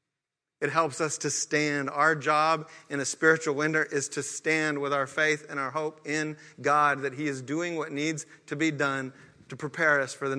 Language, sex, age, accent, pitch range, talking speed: English, male, 40-59, American, 140-160 Hz, 210 wpm